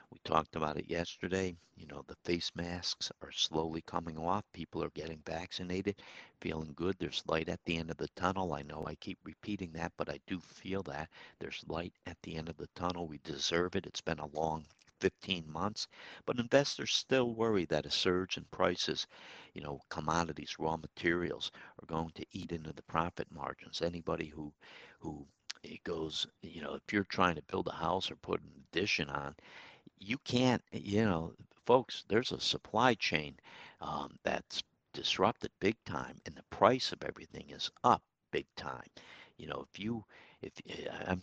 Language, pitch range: English, 80-110 Hz